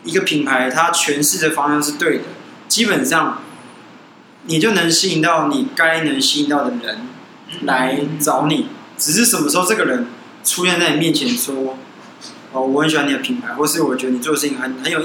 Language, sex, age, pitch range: Chinese, male, 20-39, 145-210 Hz